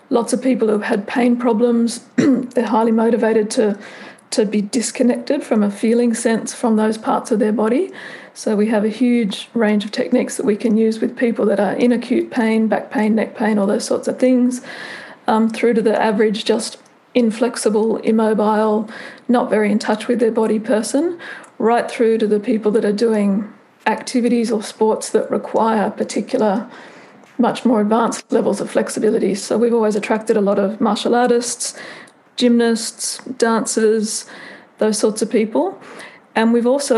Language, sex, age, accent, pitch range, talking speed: English, female, 40-59, Australian, 215-245 Hz, 170 wpm